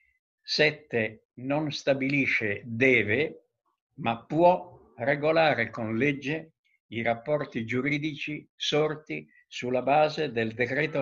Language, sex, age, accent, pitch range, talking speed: Italian, male, 60-79, native, 120-155 Hz, 95 wpm